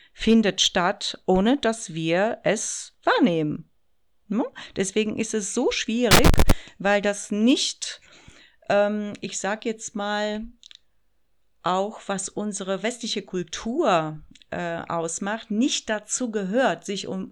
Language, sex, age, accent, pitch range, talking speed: German, female, 40-59, German, 185-225 Hz, 110 wpm